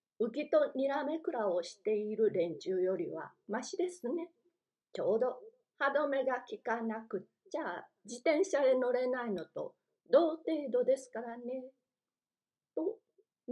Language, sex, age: Japanese, female, 40-59